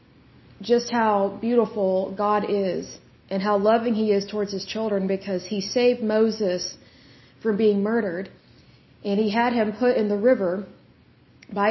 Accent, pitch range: American, 200-230 Hz